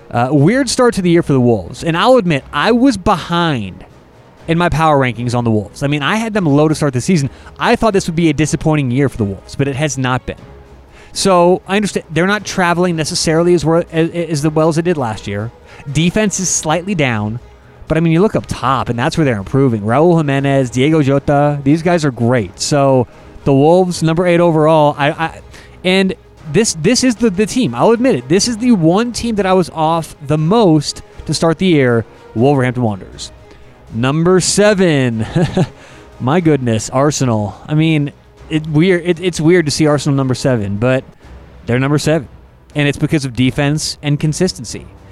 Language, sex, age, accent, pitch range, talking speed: English, male, 30-49, American, 125-175 Hz, 200 wpm